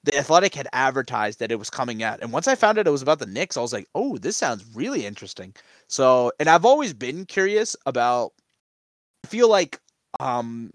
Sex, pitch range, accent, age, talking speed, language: male, 105-130 Hz, American, 20-39, 210 wpm, English